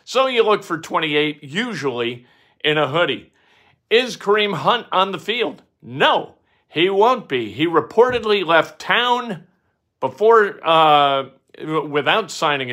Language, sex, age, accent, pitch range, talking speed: English, male, 50-69, American, 155-220 Hz, 125 wpm